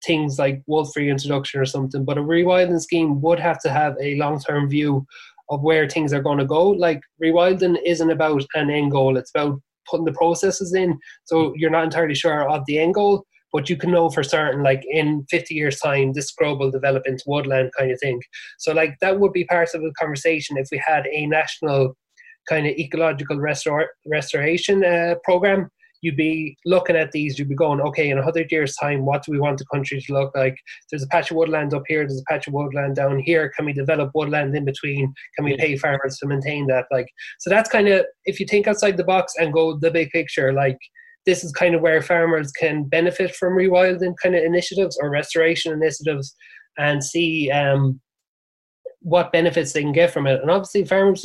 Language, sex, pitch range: English, male, 145-170 Hz